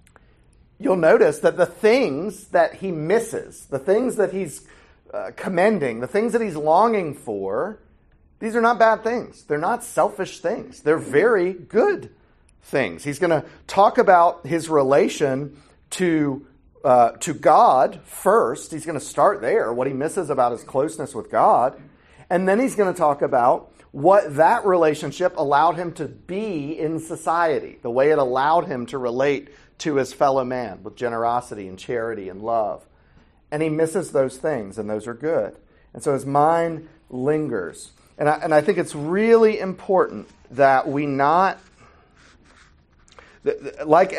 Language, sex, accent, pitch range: English, male, American, 120-175 Hz